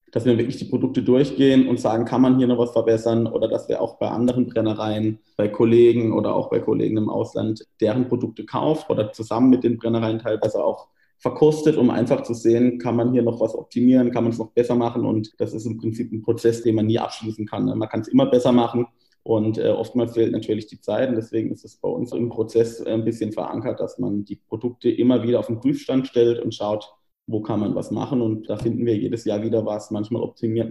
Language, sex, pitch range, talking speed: German, male, 110-120 Hz, 230 wpm